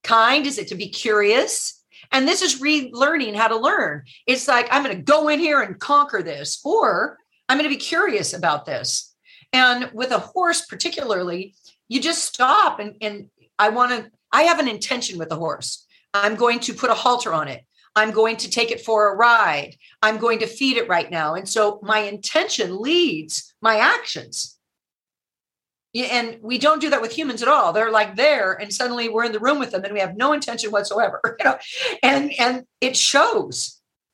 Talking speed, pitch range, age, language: 200 wpm, 205-275 Hz, 50-69, English